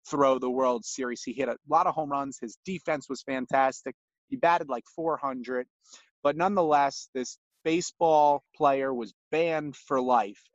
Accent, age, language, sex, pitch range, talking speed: American, 30-49, English, male, 130-170 Hz, 160 wpm